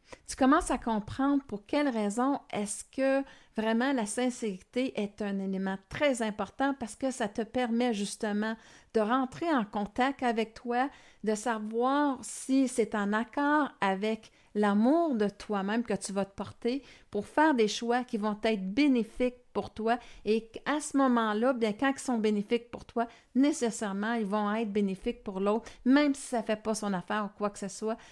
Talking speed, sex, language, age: 180 wpm, female, French, 50-69